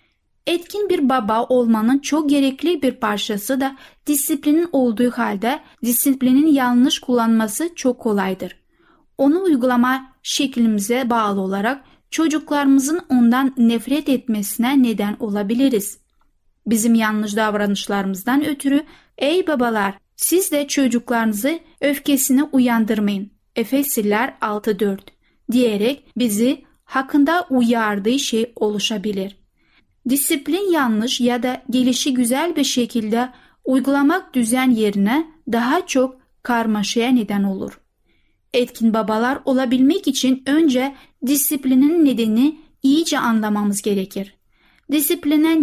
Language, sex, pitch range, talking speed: Turkish, female, 225-285 Hz, 95 wpm